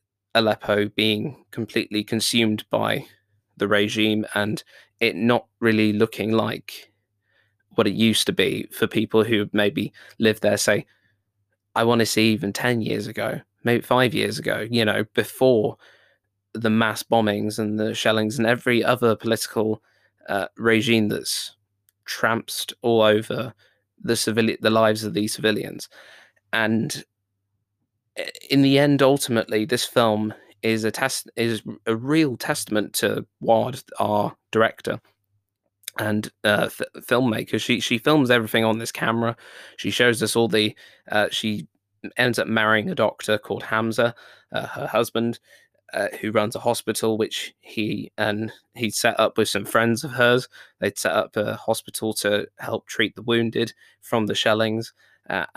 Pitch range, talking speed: 105-115 Hz, 150 wpm